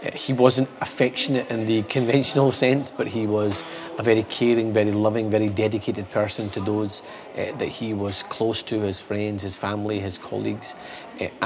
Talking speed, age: 175 wpm, 30-49